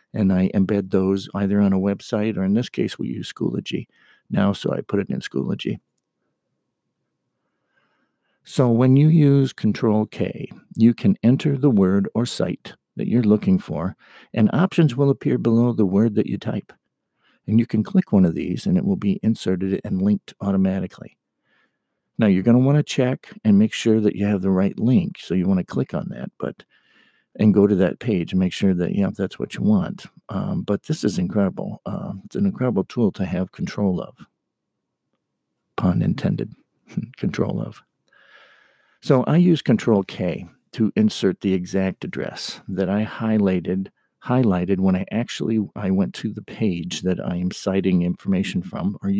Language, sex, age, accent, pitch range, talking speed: English, male, 50-69, American, 95-130 Hz, 185 wpm